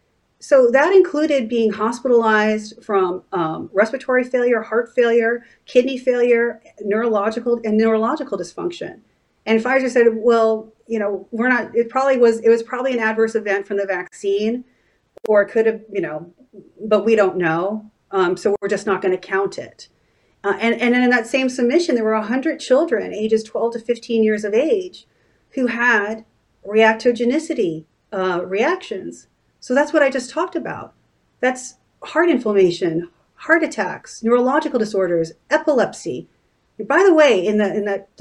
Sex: female